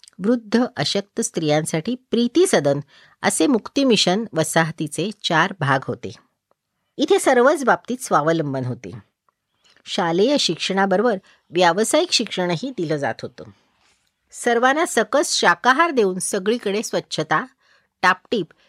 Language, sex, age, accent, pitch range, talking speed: Marathi, female, 50-69, native, 160-240 Hz, 100 wpm